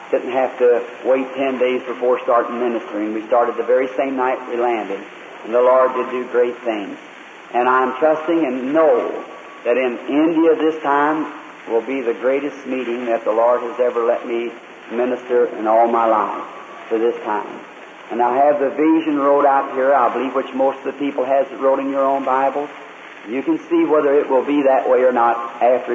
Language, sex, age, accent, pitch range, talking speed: English, male, 50-69, American, 125-145 Hz, 205 wpm